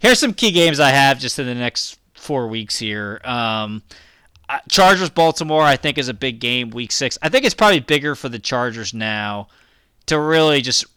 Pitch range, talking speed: 110-135 Hz, 195 wpm